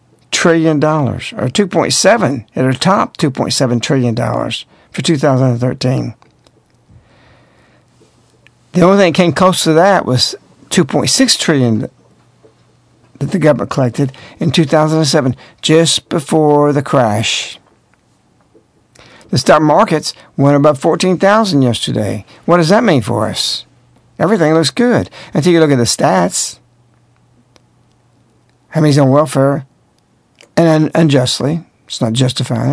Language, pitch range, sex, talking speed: English, 130-155 Hz, male, 120 wpm